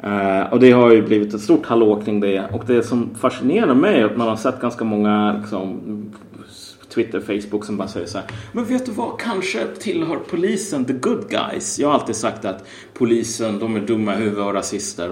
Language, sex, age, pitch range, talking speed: Swedish, male, 30-49, 105-135 Hz, 210 wpm